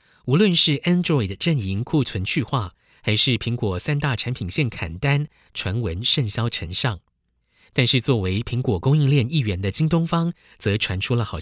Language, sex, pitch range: Chinese, male, 100-140 Hz